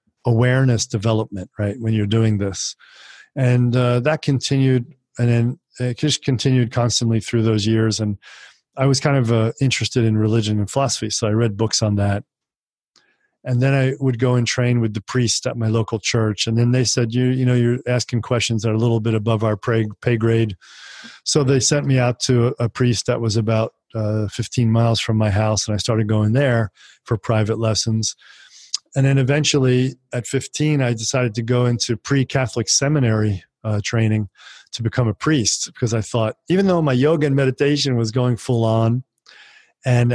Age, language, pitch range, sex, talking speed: 40-59, German, 110-125 Hz, male, 190 wpm